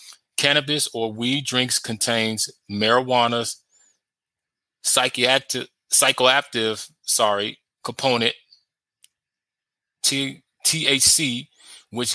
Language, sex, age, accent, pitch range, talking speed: English, male, 30-49, American, 115-135 Hz, 60 wpm